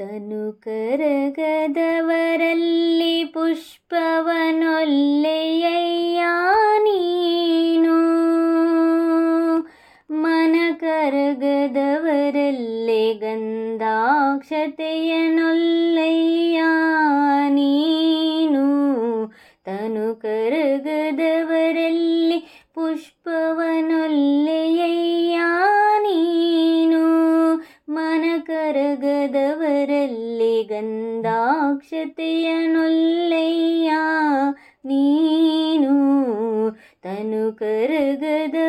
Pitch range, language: 285-330 Hz, English